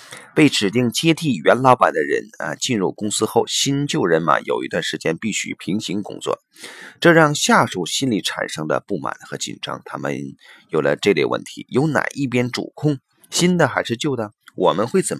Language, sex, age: Chinese, male, 30-49